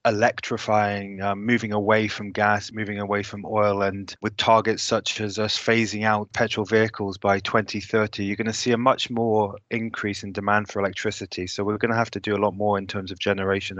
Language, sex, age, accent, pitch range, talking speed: English, male, 20-39, British, 100-115 Hz, 210 wpm